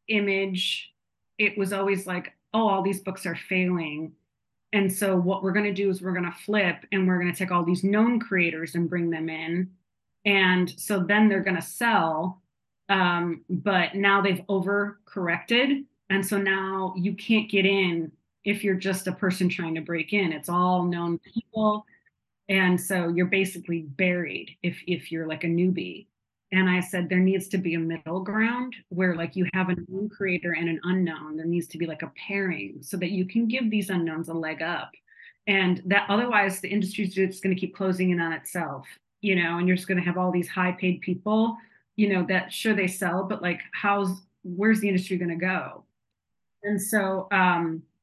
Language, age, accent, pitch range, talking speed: English, 30-49, American, 175-200 Hz, 195 wpm